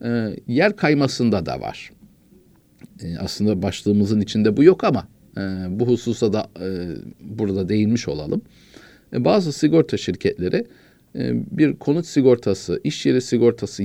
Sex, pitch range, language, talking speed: male, 100-125 Hz, Turkish, 135 wpm